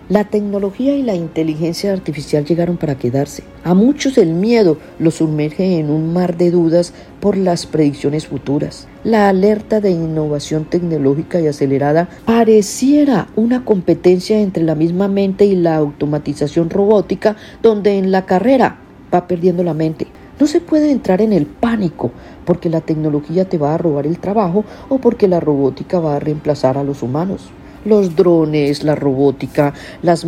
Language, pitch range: Spanish, 150-195 Hz